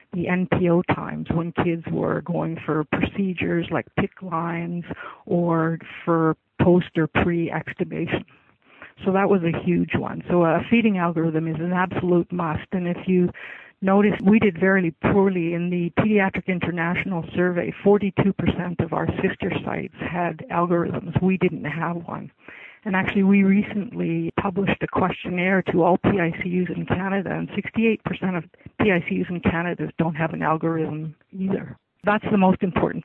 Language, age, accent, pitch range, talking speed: English, 60-79, American, 165-195 Hz, 150 wpm